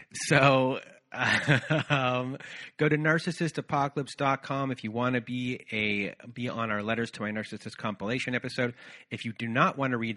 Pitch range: 115-155 Hz